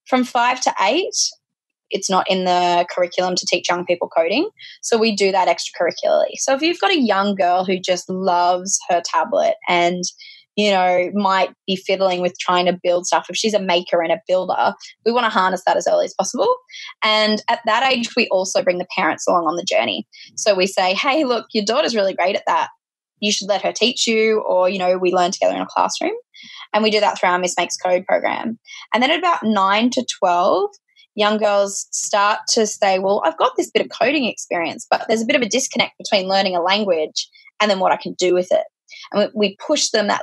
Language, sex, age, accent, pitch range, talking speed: English, female, 10-29, Australian, 185-250 Hz, 225 wpm